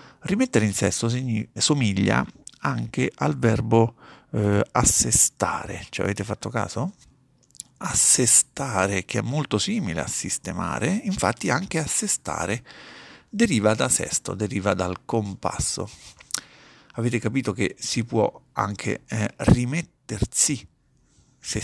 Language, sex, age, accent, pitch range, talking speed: Italian, male, 50-69, native, 100-130 Hz, 105 wpm